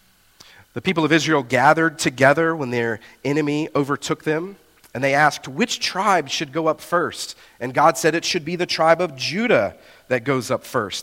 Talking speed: 185 wpm